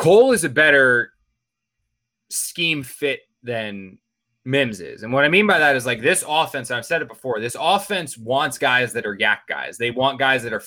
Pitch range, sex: 125-175 Hz, male